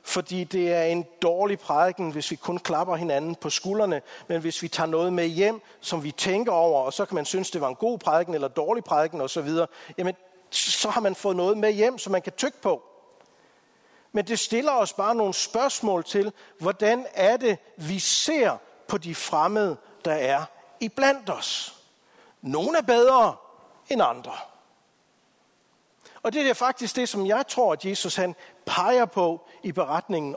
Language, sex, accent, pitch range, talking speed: Danish, male, native, 170-220 Hz, 180 wpm